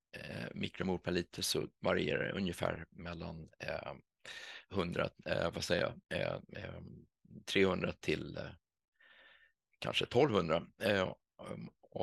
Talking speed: 80 wpm